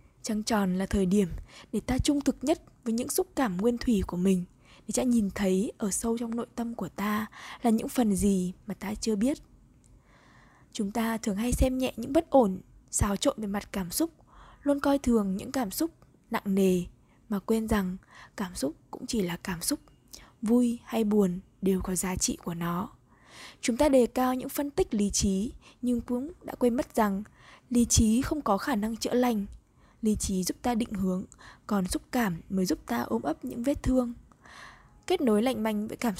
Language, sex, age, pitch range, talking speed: Vietnamese, female, 20-39, 195-250 Hz, 205 wpm